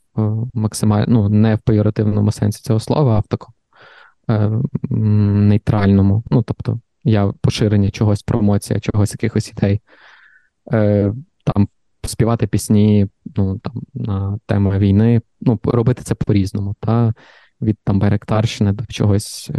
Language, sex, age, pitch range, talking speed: Ukrainian, male, 20-39, 105-120 Hz, 125 wpm